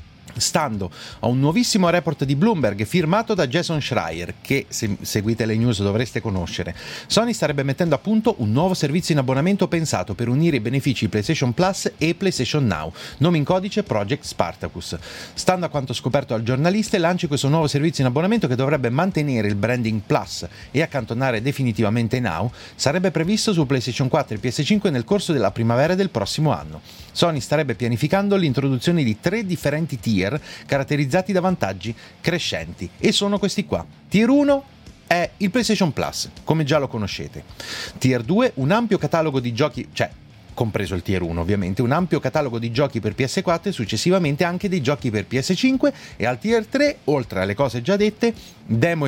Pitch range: 115-180 Hz